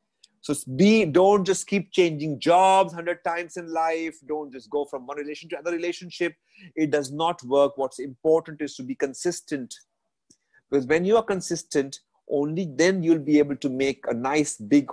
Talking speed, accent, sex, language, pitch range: 180 wpm, Indian, male, English, 145-190 Hz